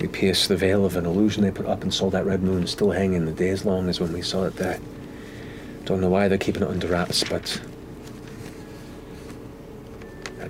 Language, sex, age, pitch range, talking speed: English, male, 40-59, 85-105 Hz, 210 wpm